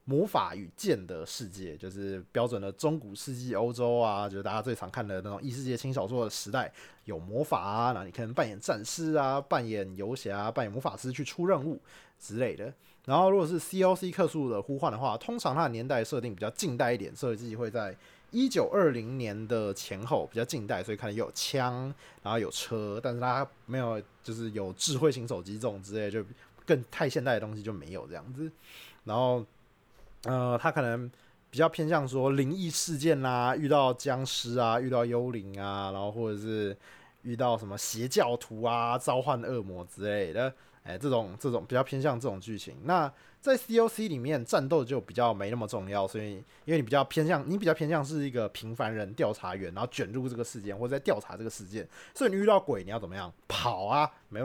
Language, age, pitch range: Chinese, 20-39, 105-140 Hz